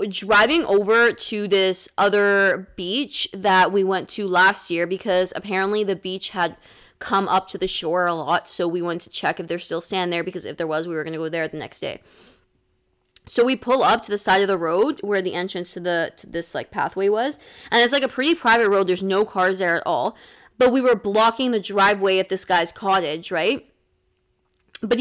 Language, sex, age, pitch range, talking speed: English, female, 20-39, 180-225 Hz, 220 wpm